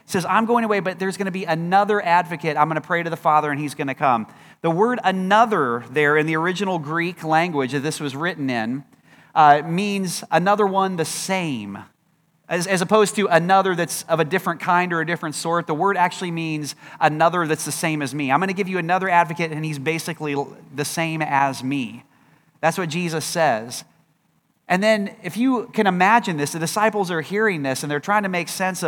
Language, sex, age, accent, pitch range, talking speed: English, male, 30-49, American, 155-195 Hz, 215 wpm